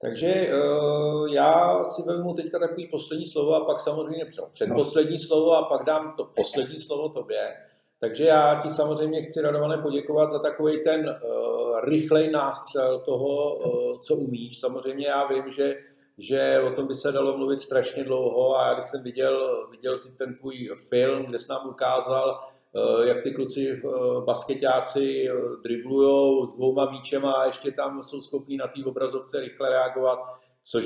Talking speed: 165 wpm